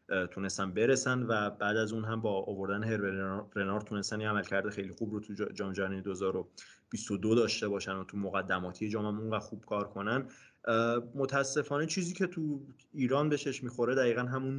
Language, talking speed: English, 180 wpm